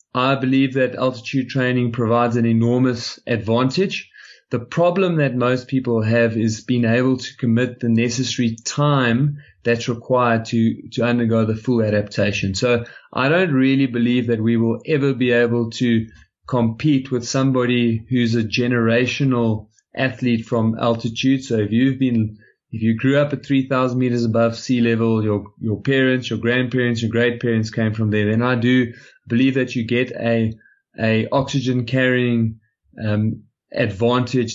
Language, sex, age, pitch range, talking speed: English, male, 20-39, 115-130 Hz, 155 wpm